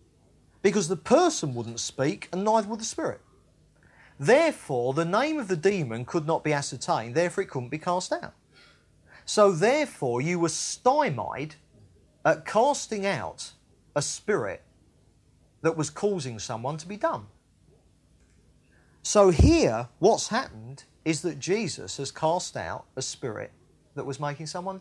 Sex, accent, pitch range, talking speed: male, British, 140-220 Hz, 145 wpm